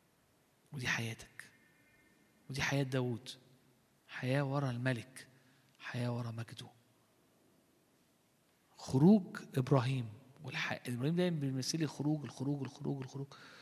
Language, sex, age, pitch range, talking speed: Arabic, male, 50-69, 125-180 Hz, 95 wpm